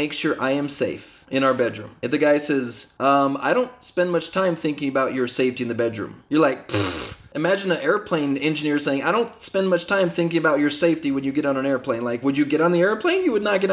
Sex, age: male, 20-39